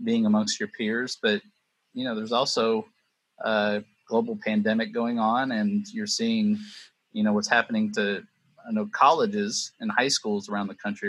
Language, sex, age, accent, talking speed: English, male, 30-49, American, 170 wpm